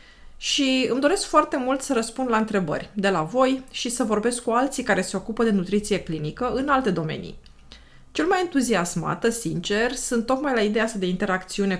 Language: Romanian